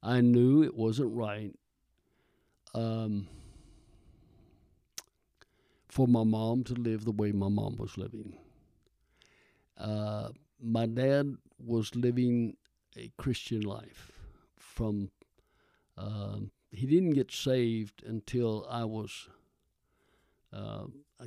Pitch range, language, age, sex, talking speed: 105-120 Hz, English, 60-79, male, 100 wpm